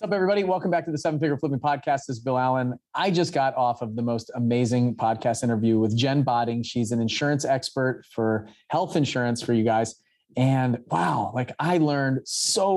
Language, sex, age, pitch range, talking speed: English, male, 30-49, 115-150 Hz, 200 wpm